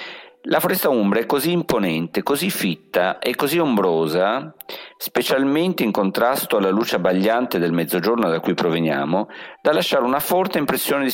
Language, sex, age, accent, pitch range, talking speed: Italian, male, 50-69, native, 90-135 Hz, 150 wpm